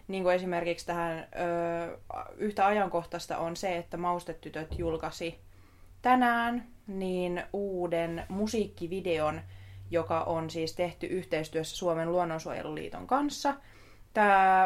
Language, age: Finnish, 20-39